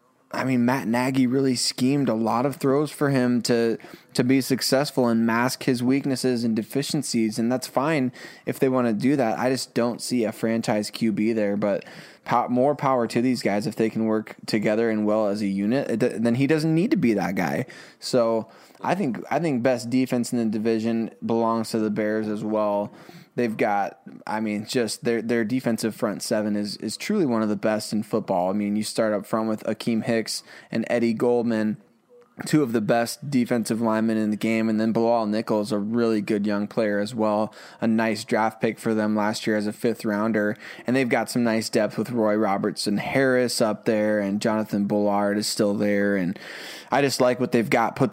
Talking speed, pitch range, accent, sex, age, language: 210 wpm, 105-125 Hz, American, male, 20-39, English